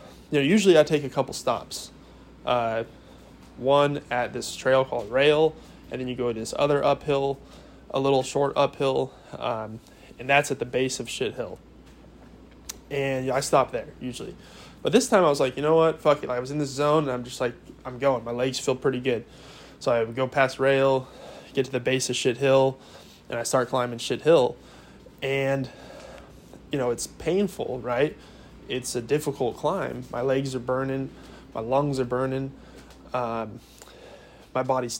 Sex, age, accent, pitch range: male, 20-39, American, 125-145 Hz